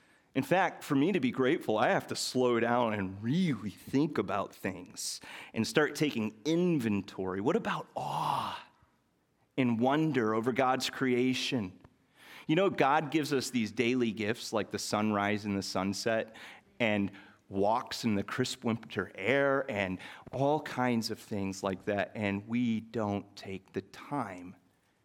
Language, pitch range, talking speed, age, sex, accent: English, 100-125 Hz, 150 wpm, 30-49, male, American